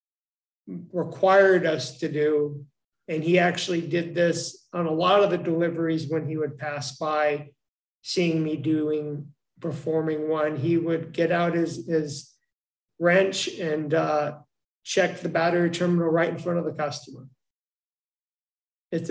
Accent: American